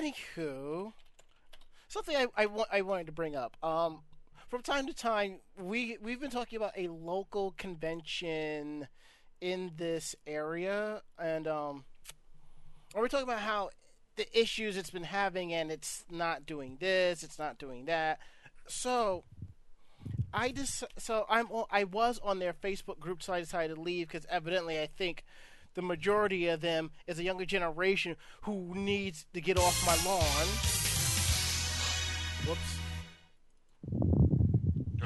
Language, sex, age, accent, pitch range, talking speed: English, male, 30-49, American, 150-205 Hz, 145 wpm